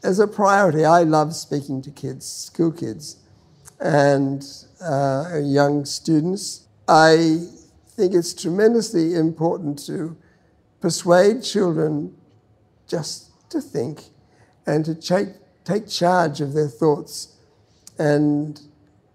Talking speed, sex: 105 wpm, male